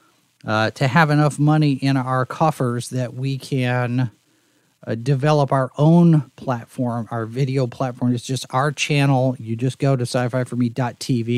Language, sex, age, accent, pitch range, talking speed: English, male, 40-59, American, 120-145 Hz, 160 wpm